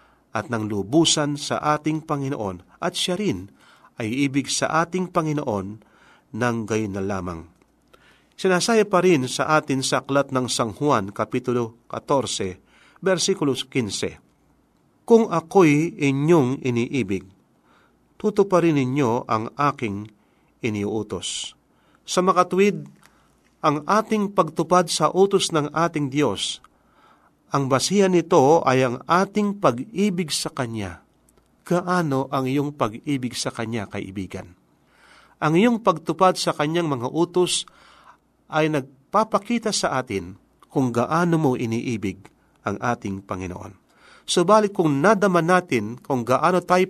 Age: 40-59